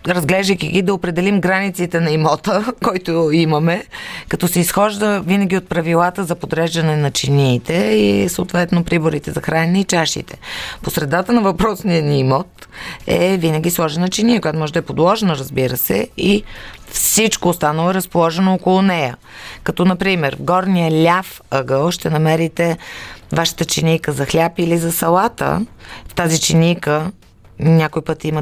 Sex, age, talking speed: female, 30-49, 150 wpm